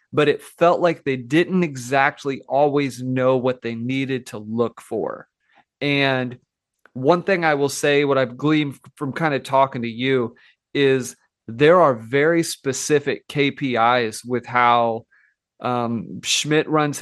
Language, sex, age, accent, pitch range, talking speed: English, male, 30-49, American, 125-150 Hz, 145 wpm